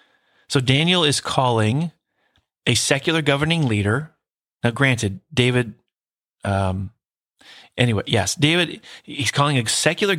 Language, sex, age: English, male, 30-49